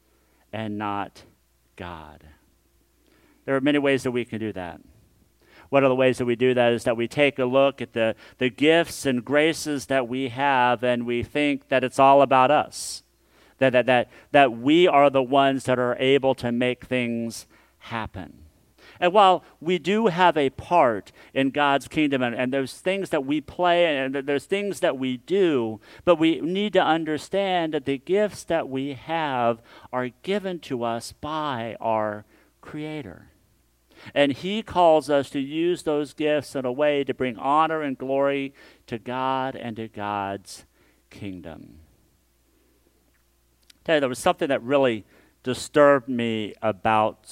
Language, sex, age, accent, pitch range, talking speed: English, male, 50-69, American, 115-150 Hz, 165 wpm